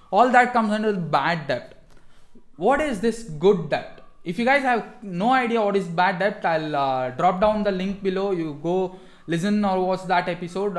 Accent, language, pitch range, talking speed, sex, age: Indian, English, 165-225 Hz, 195 wpm, male, 20-39